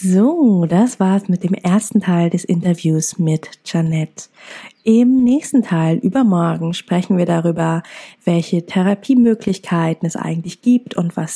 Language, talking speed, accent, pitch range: German, 130 wpm, German, 165-200 Hz